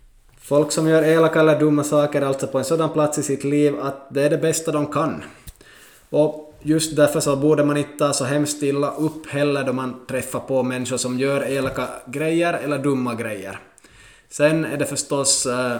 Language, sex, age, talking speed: Swedish, male, 20-39, 190 wpm